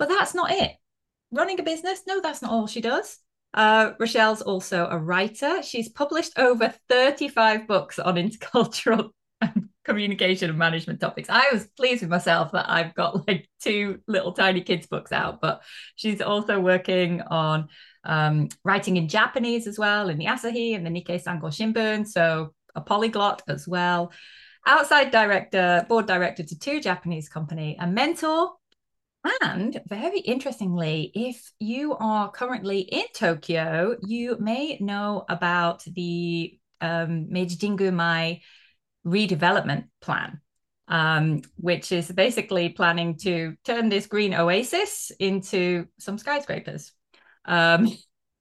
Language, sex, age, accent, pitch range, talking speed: English, female, 30-49, British, 170-230 Hz, 140 wpm